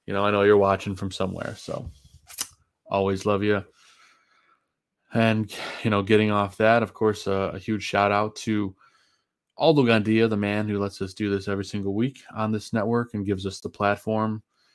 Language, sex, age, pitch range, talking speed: English, male, 20-39, 95-105 Hz, 185 wpm